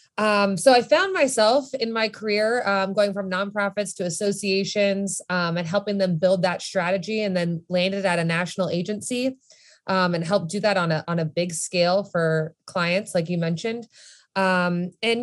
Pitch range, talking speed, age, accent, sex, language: 175-210 Hz, 180 wpm, 20-39, American, female, English